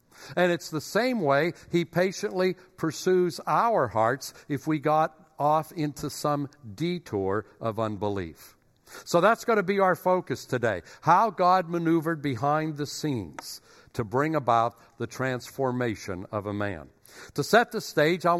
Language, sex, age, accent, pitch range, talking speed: English, male, 60-79, American, 125-175 Hz, 150 wpm